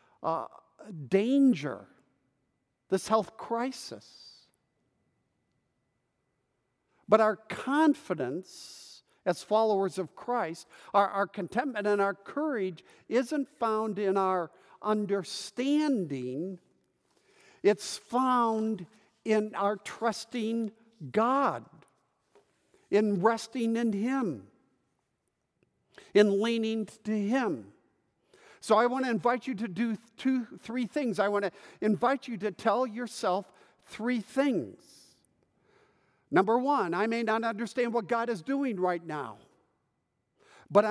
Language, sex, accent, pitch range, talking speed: English, male, American, 200-245 Hz, 105 wpm